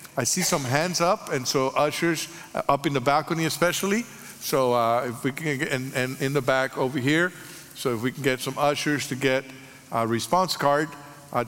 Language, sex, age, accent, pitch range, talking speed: English, male, 50-69, American, 130-165 Hz, 205 wpm